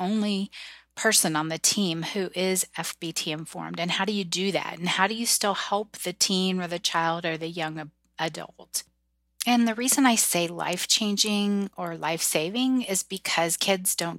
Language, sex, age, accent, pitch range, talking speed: English, female, 30-49, American, 165-200 Hz, 180 wpm